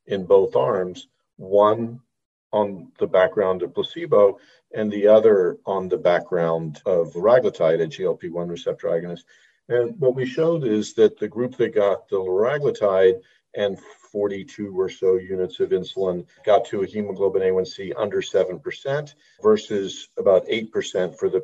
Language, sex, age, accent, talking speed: English, male, 50-69, American, 145 wpm